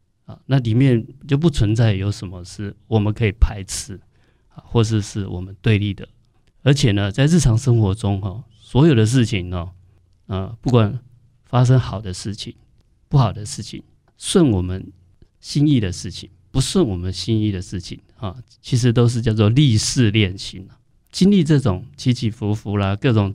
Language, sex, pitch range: Chinese, male, 95-120 Hz